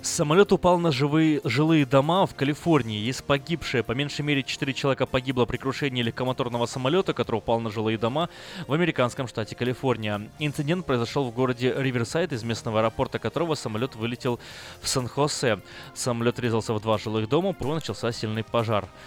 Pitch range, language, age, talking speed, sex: 115-145 Hz, Russian, 20-39, 165 wpm, male